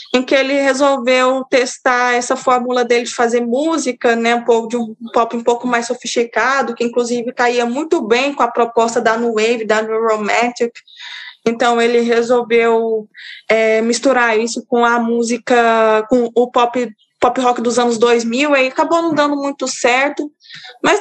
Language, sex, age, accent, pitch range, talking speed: Portuguese, female, 20-39, Brazilian, 240-295 Hz, 165 wpm